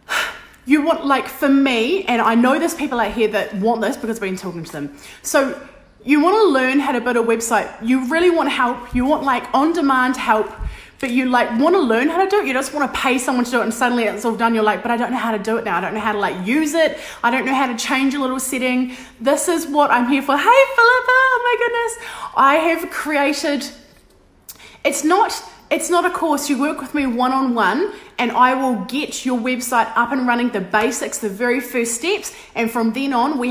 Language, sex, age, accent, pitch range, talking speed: English, female, 20-39, Australian, 235-300 Hz, 245 wpm